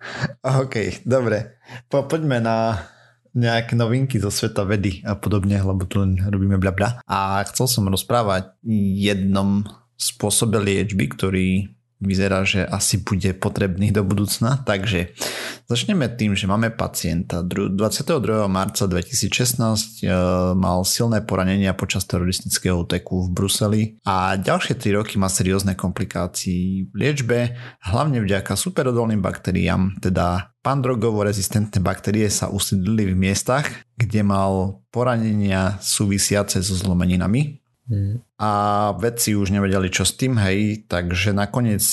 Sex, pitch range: male, 95-115 Hz